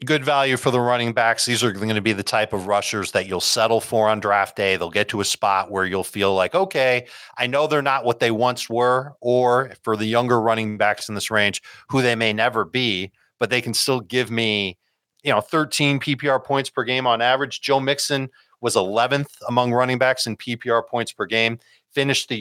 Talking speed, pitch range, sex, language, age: 220 wpm, 110-140 Hz, male, English, 40-59